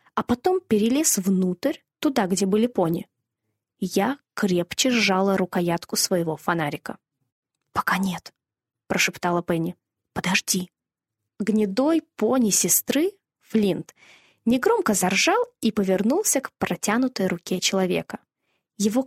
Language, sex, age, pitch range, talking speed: Russian, female, 20-39, 185-255 Hz, 100 wpm